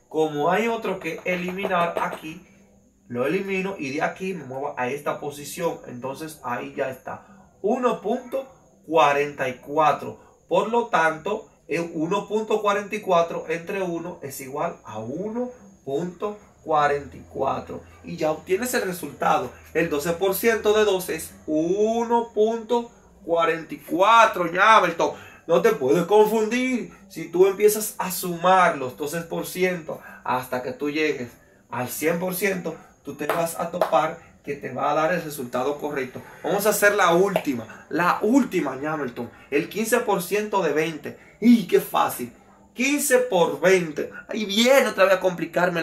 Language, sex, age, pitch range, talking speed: English, male, 30-49, 155-215 Hz, 130 wpm